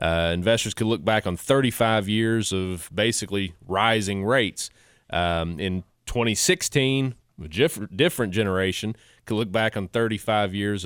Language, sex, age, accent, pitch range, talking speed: English, male, 30-49, American, 95-115 Hz, 140 wpm